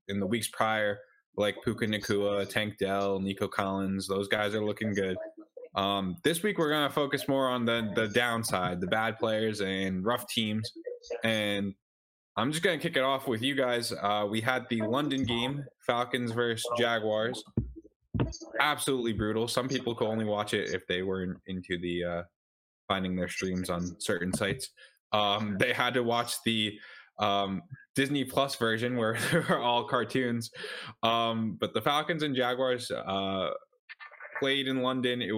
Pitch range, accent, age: 100-125 Hz, American, 10-29